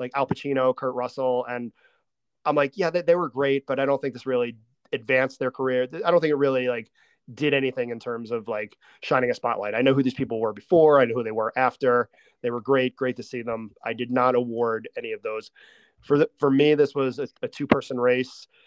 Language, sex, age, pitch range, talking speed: English, male, 30-49, 115-135 Hz, 240 wpm